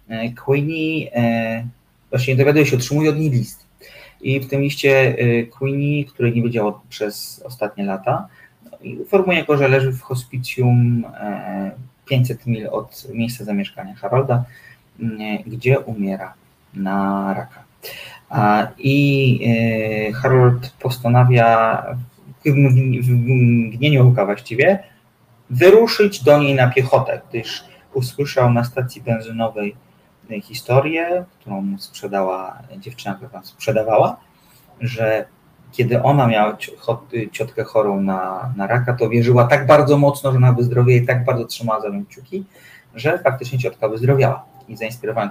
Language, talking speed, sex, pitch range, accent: Polish, 125 wpm, male, 115-135 Hz, native